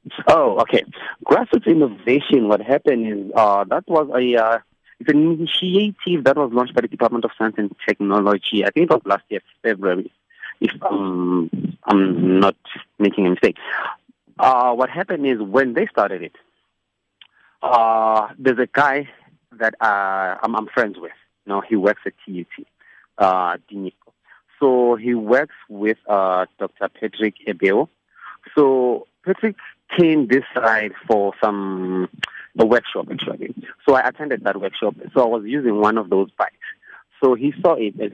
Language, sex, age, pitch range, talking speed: English, male, 30-49, 100-135 Hz, 160 wpm